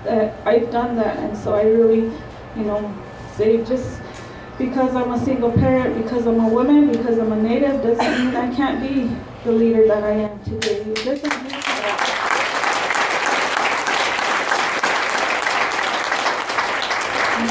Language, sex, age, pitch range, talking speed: English, female, 30-49, 220-245 Hz, 125 wpm